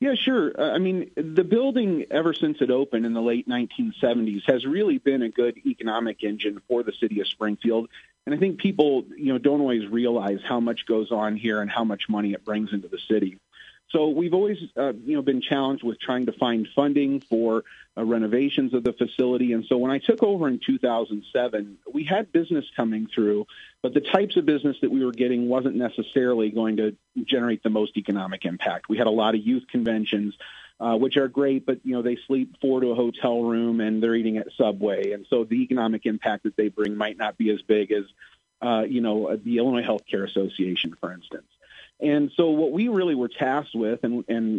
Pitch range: 110-135 Hz